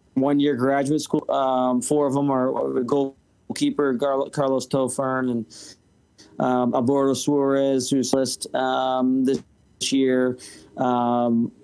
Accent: American